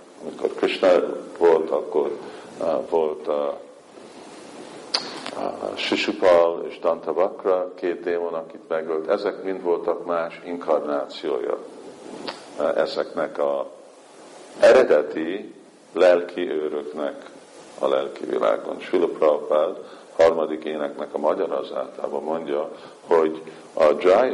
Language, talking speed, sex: Hungarian, 95 wpm, male